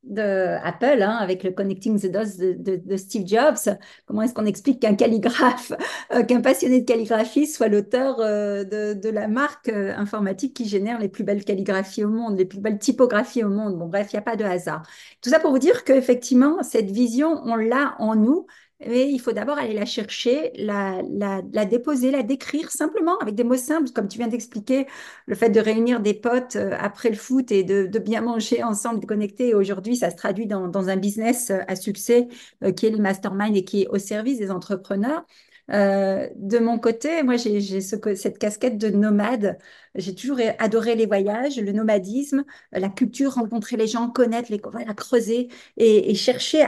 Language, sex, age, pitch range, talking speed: French, female, 40-59, 205-255 Hz, 205 wpm